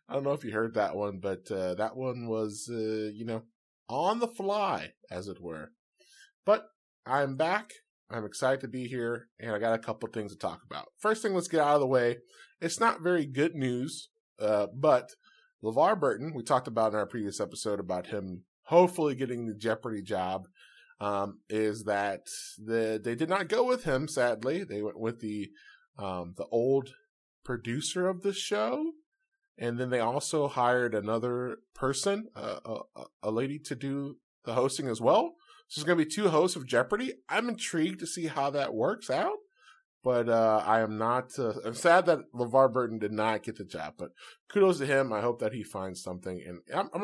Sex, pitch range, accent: male, 105-175 Hz, American